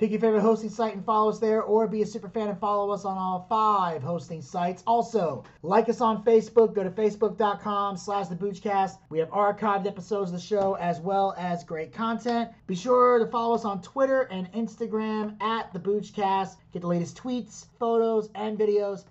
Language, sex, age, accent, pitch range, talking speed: English, male, 30-49, American, 185-225 Hz, 195 wpm